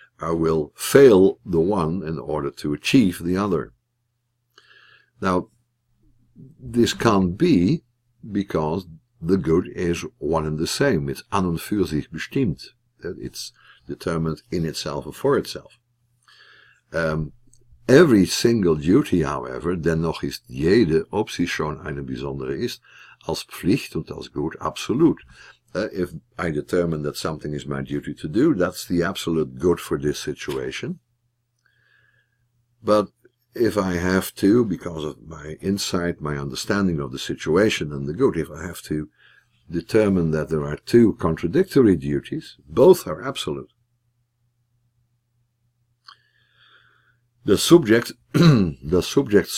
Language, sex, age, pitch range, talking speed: English, male, 60-79, 80-120 Hz, 130 wpm